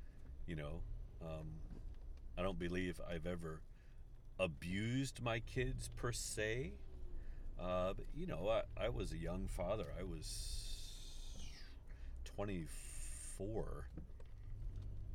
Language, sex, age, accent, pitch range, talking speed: English, male, 50-69, American, 70-95 Hz, 105 wpm